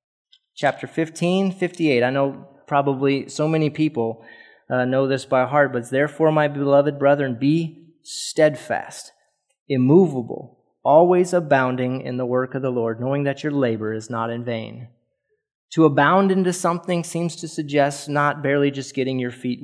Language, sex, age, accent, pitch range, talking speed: English, male, 20-39, American, 130-155 Hz, 160 wpm